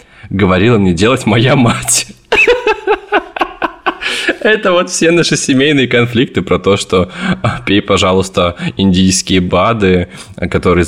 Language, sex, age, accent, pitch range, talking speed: Russian, male, 20-39, native, 85-100 Hz, 105 wpm